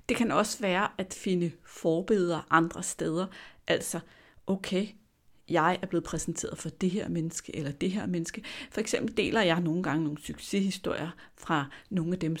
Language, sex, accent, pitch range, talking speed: Danish, female, native, 165-215 Hz, 170 wpm